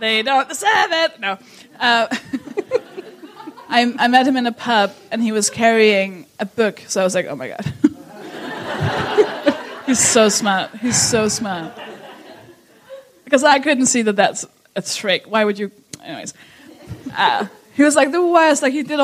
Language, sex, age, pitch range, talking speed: English, female, 20-39, 200-295 Hz, 165 wpm